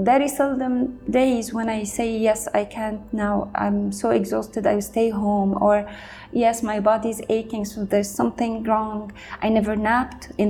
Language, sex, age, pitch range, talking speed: English, female, 30-49, 210-255 Hz, 165 wpm